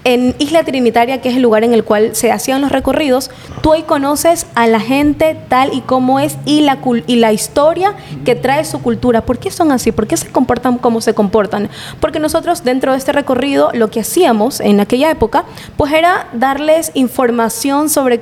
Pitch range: 235-295 Hz